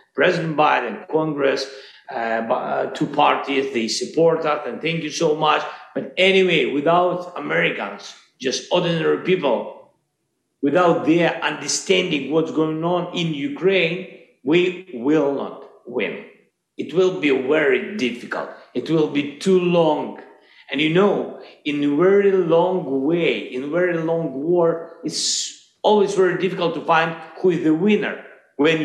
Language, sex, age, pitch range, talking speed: English, male, 50-69, 145-185 Hz, 140 wpm